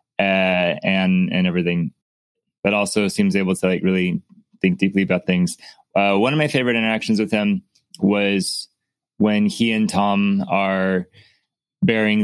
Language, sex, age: English, male, 20-39